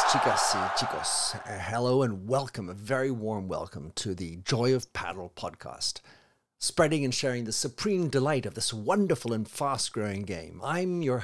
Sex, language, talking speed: male, English, 165 wpm